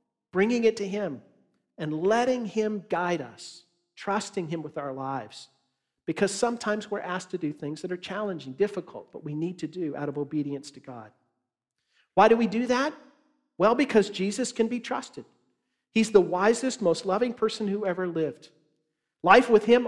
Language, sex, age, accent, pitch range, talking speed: English, male, 50-69, American, 160-220 Hz, 175 wpm